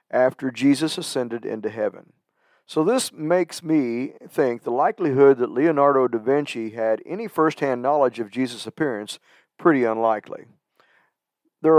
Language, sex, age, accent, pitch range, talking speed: English, male, 50-69, American, 125-160 Hz, 130 wpm